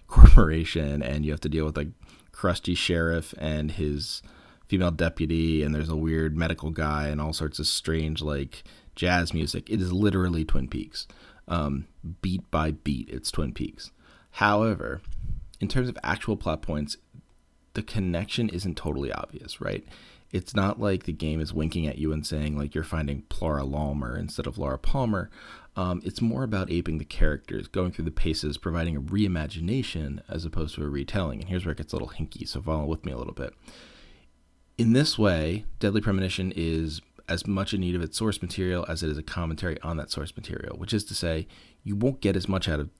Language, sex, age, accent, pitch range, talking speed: English, male, 30-49, American, 75-95 Hz, 195 wpm